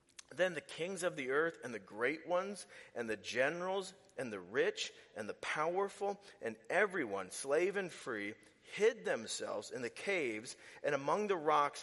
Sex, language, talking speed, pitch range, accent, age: male, English, 165 wpm, 120-185 Hz, American, 40-59